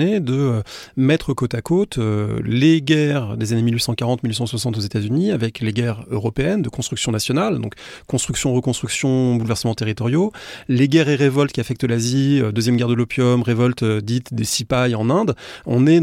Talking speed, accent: 175 wpm, French